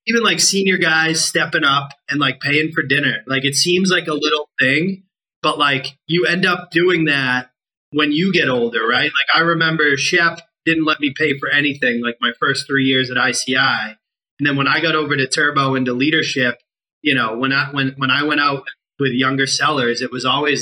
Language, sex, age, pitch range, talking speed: English, male, 30-49, 130-160 Hz, 215 wpm